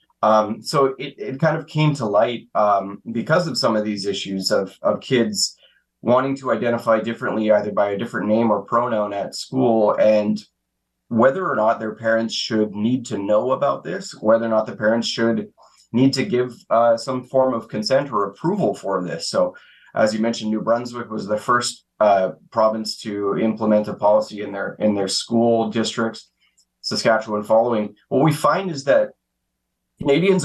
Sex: male